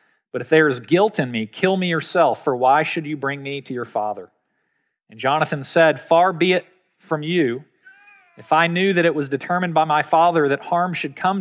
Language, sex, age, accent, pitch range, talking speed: English, male, 40-59, American, 145-175 Hz, 215 wpm